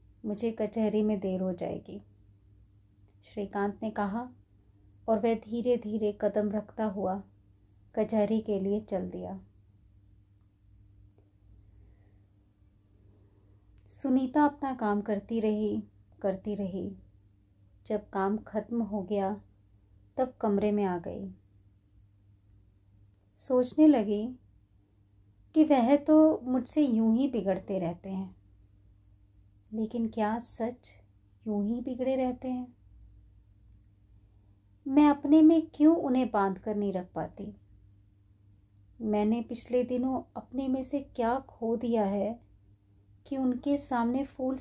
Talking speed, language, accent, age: 110 wpm, Hindi, native, 30-49